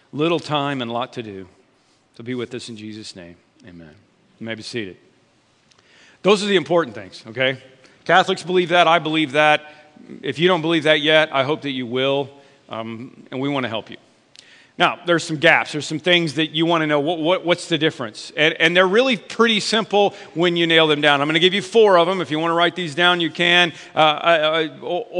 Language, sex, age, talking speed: English, male, 40-59, 225 wpm